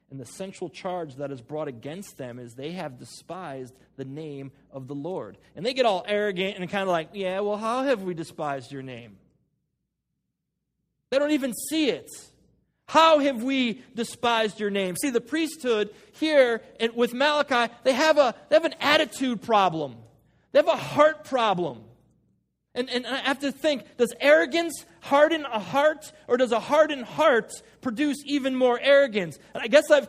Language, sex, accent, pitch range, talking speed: English, male, American, 190-285 Hz, 175 wpm